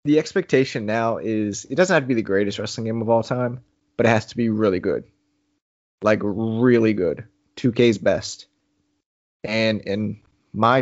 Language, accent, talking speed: English, American, 170 wpm